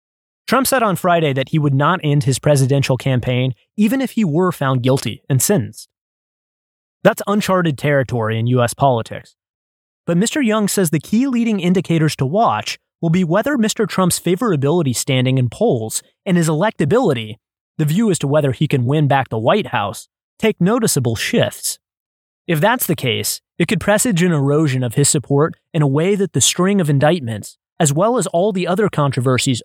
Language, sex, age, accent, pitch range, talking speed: English, male, 20-39, American, 135-190 Hz, 180 wpm